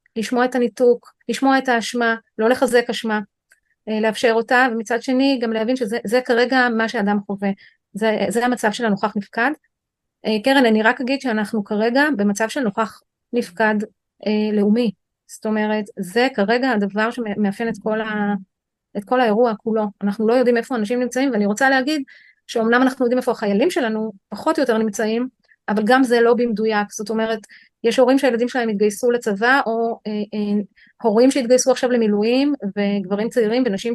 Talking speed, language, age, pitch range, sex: 165 wpm, Hebrew, 30-49, 215-250 Hz, female